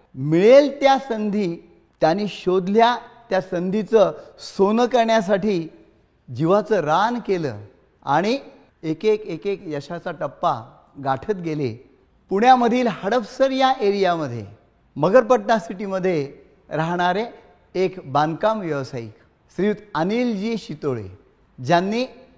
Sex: male